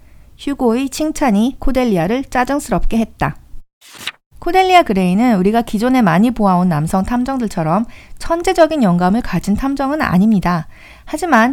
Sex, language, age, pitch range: female, Korean, 40-59, 190-275 Hz